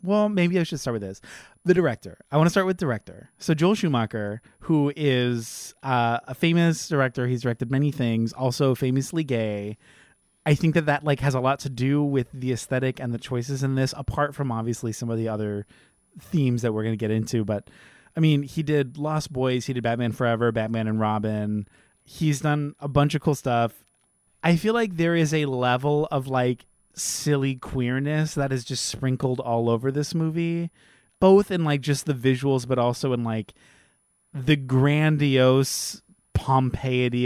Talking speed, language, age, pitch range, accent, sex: 185 wpm, English, 20-39, 120-150 Hz, American, male